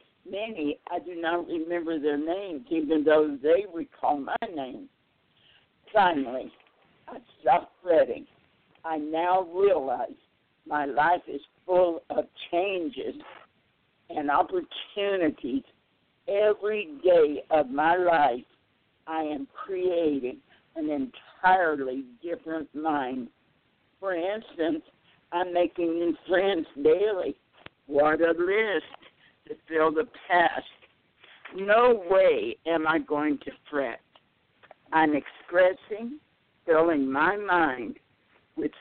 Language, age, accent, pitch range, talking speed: English, 60-79, American, 155-215 Hz, 105 wpm